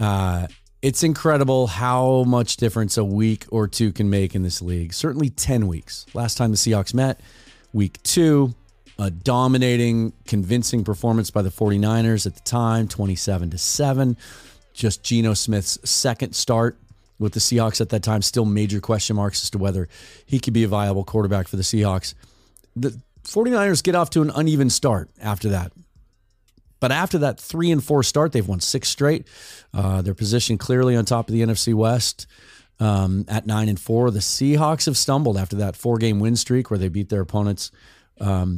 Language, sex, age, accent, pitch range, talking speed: English, male, 30-49, American, 100-125 Hz, 180 wpm